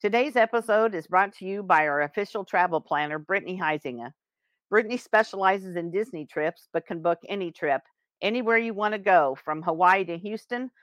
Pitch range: 170-210 Hz